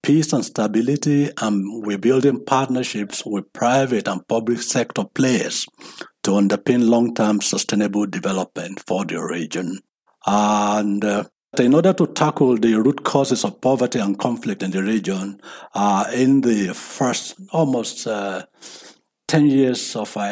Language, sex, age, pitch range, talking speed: English, male, 60-79, 100-125 Hz, 140 wpm